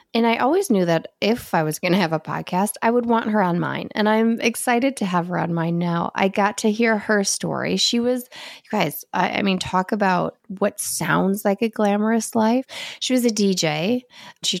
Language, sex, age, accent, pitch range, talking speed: English, female, 20-39, American, 170-225 Hz, 220 wpm